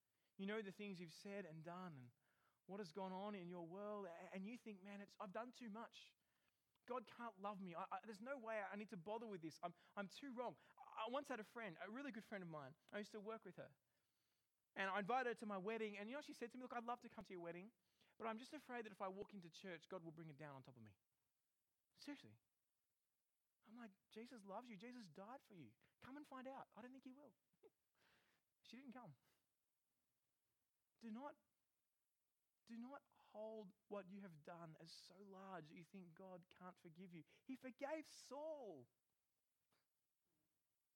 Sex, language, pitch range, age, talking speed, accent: male, English, 155-225 Hz, 20-39, 210 wpm, Australian